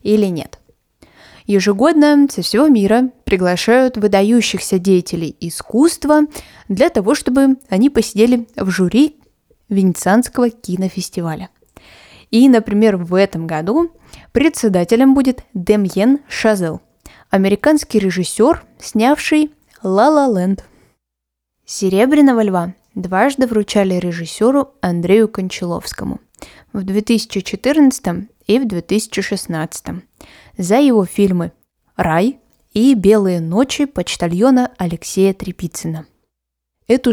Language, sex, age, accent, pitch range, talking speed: Russian, female, 20-39, native, 185-250 Hz, 90 wpm